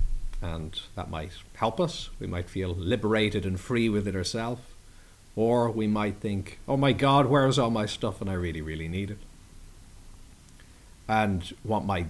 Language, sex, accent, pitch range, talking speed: English, male, Irish, 85-105 Hz, 170 wpm